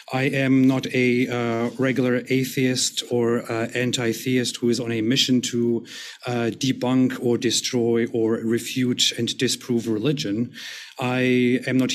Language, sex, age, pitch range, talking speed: English, male, 40-59, 115-130 Hz, 140 wpm